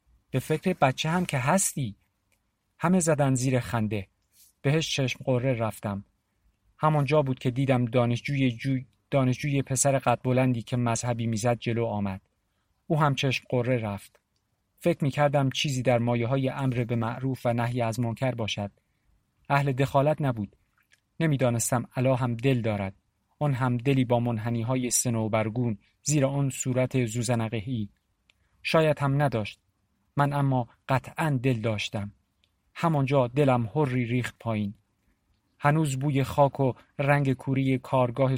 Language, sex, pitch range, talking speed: Persian, male, 110-140 Hz, 140 wpm